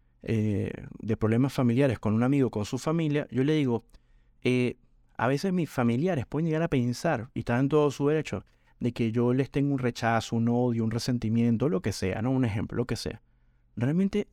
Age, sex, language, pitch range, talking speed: 30-49, male, Spanish, 110-145 Hz, 205 wpm